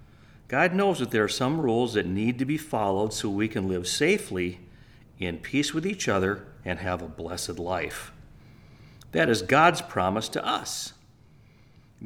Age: 40-59